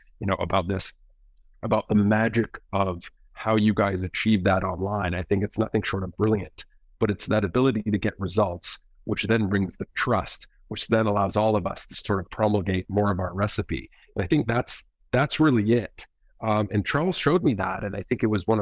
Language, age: English, 40-59